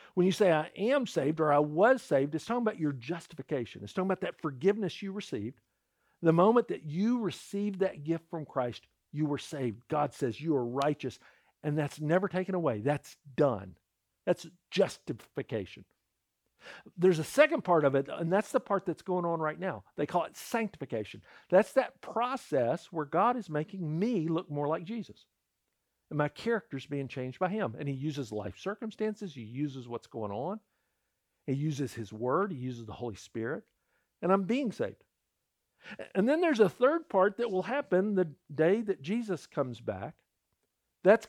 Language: English